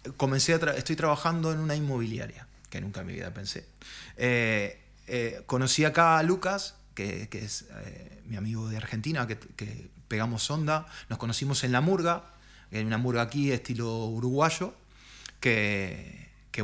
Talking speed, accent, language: 160 wpm, Argentinian, Spanish